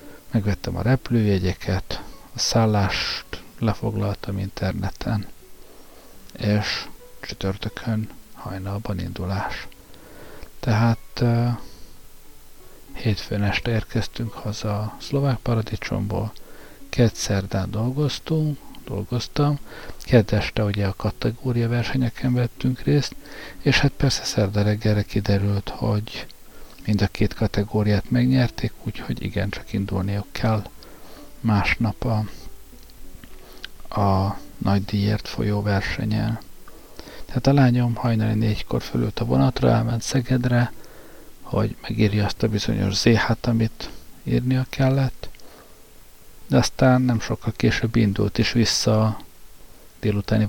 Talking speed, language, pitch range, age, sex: 95 wpm, Hungarian, 100-120 Hz, 60-79, male